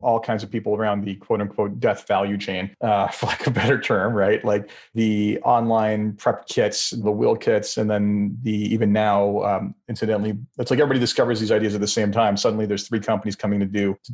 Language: English